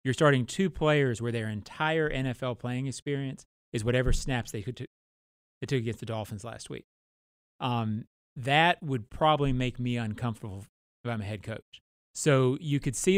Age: 30-49